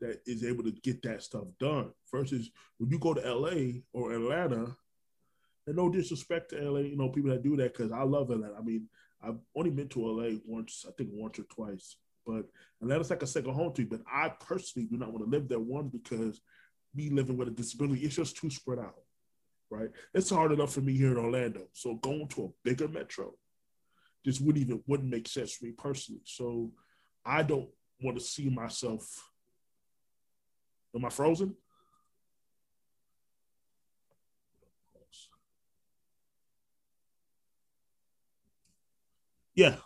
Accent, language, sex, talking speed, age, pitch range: American, English, male, 165 wpm, 20-39, 115-145 Hz